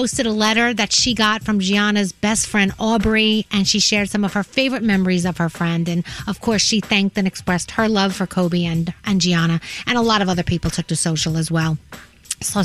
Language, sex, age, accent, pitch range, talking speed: English, female, 40-59, American, 190-275 Hz, 235 wpm